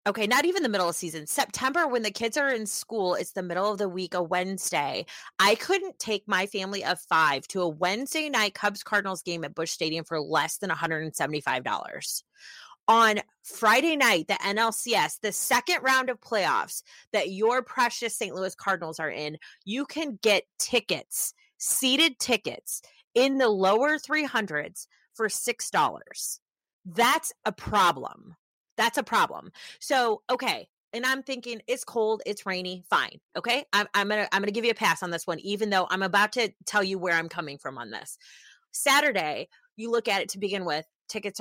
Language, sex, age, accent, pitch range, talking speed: English, female, 30-49, American, 180-245 Hz, 180 wpm